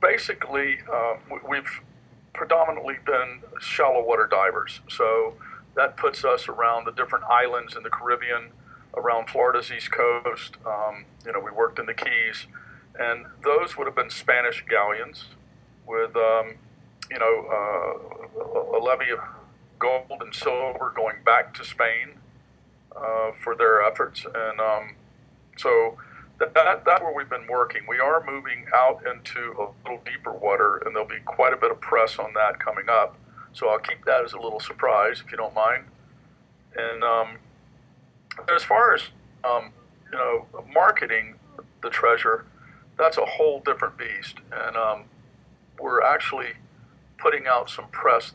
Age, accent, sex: 50-69, American, male